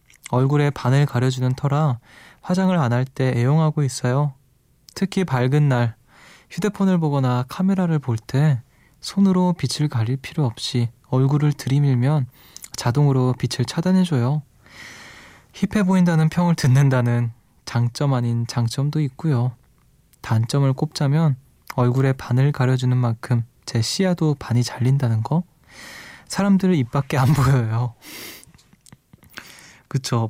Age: 20-39